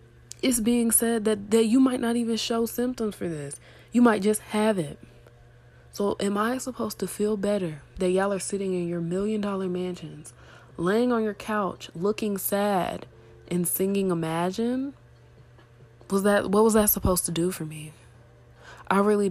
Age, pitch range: 20-39, 160-210 Hz